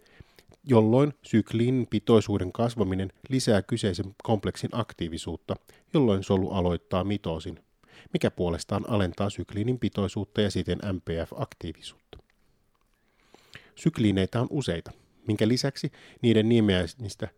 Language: Finnish